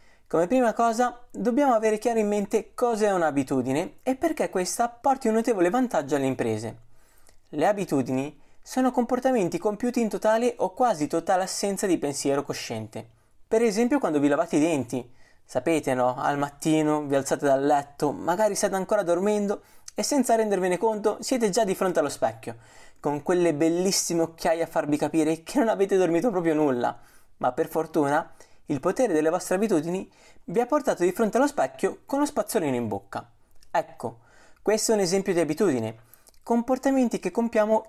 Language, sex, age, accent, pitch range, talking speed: Italian, male, 20-39, native, 145-230 Hz, 170 wpm